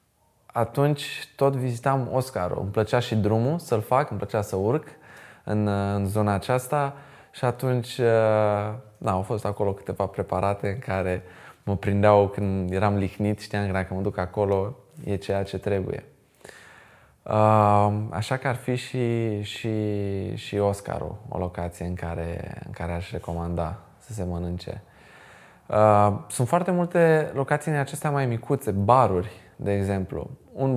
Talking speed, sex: 140 wpm, male